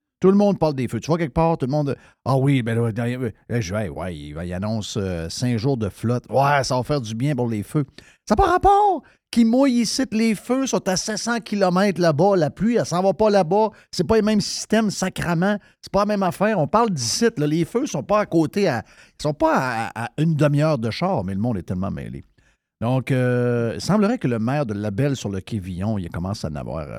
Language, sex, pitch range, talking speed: French, male, 110-170 Hz, 260 wpm